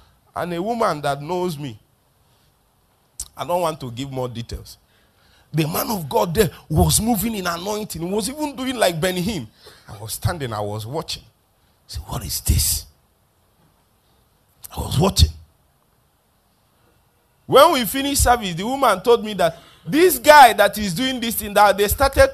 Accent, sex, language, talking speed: Nigerian, male, English, 165 wpm